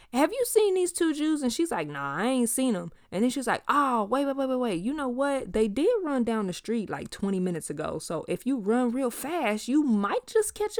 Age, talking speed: 20-39, 260 wpm